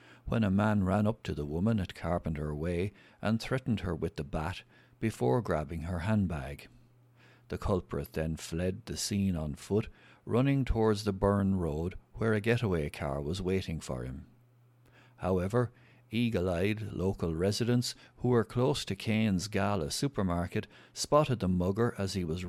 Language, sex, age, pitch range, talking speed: English, male, 60-79, 90-120 Hz, 155 wpm